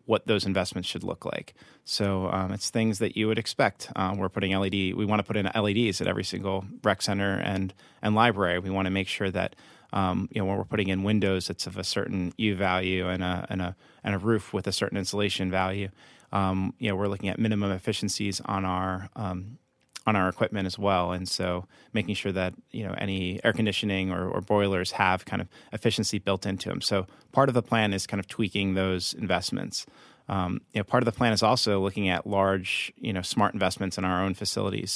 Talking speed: 225 wpm